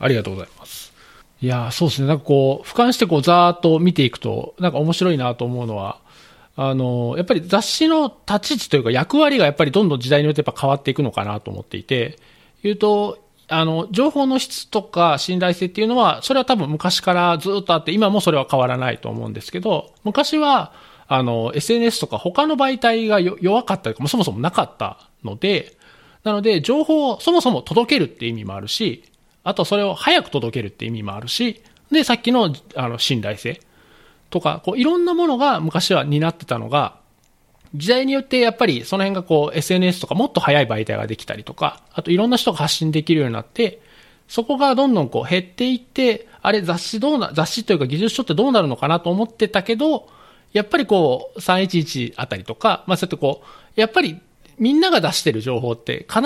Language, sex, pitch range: Japanese, male, 135-230 Hz